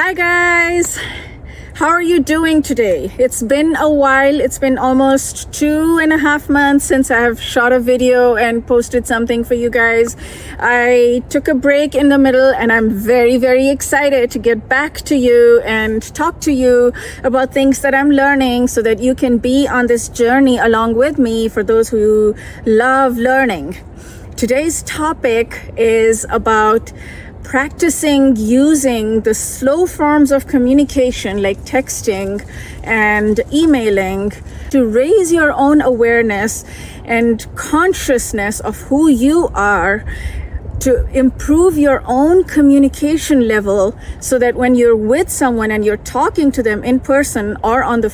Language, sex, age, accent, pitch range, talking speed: English, female, 30-49, Indian, 230-280 Hz, 150 wpm